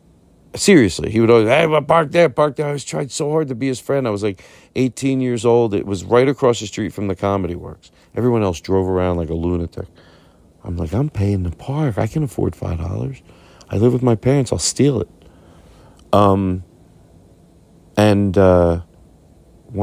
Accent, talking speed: American, 190 wpm